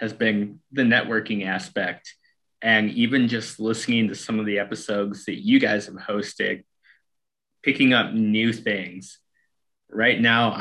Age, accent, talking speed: 20-39, American, 140 wpm